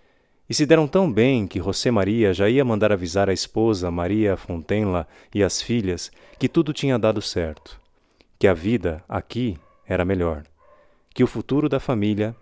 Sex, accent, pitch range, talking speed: male, Brazilian, 90-110 Hz, 170 wpm